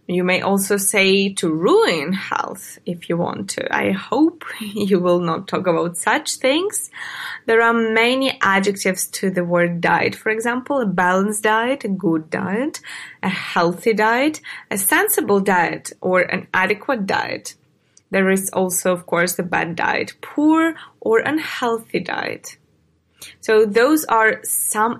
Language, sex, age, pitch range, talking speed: English, female, 20-39, 185-245 Hz, 150 wpm